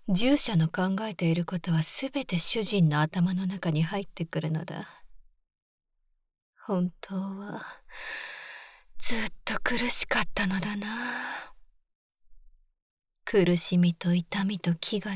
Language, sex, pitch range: Japanese, female, 180-255 Hz